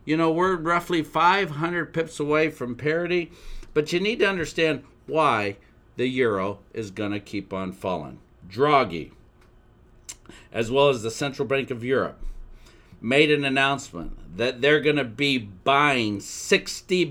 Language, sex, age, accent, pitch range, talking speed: English, male, 50-69, American, 115-150 Hz, 140 wpm